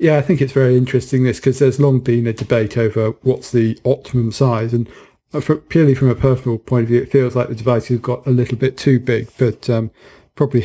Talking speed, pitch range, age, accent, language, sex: 235 wpm, 120-130 Hz, 40-59, British, English, male